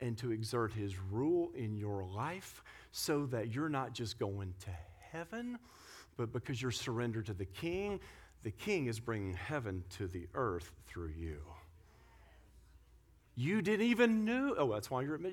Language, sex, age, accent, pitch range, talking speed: English, male, 40-59, American, 115-170 Hz, 160 wpm